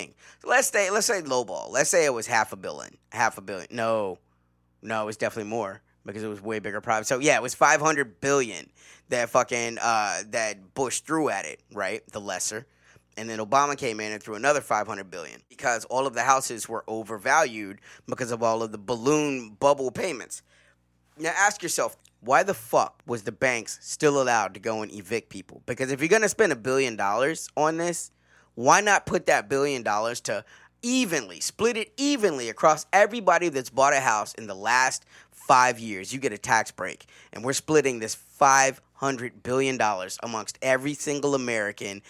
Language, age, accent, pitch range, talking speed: English, 20-39, American, 110-160 Hz, 190 wpm